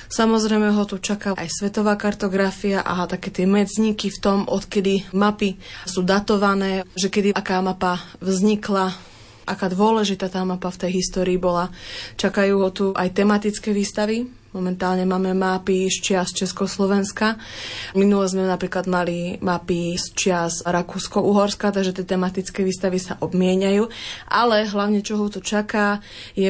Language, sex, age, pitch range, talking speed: Slovak, female, 20-39, 185-200 Hz, 145 wpm